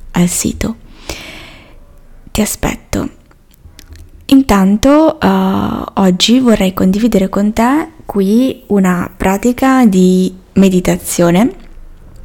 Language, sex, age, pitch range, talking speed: Italian, female, 20-39, 185-215 Hz, 75 wpm